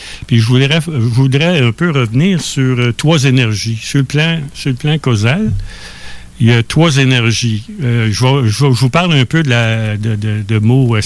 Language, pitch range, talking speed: French, 110-145 Hz, 205 wpm